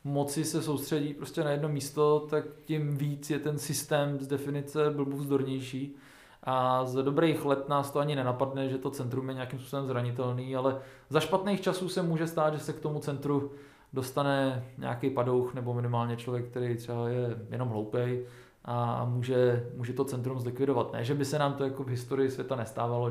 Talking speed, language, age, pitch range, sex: 185 wpm, Czech, 20-39, 125-155 Hz, male